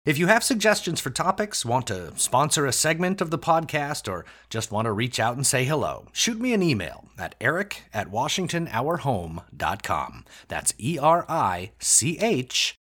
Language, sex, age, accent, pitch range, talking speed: English, male, 30-49, American, 110-170 Hz, 150 wpm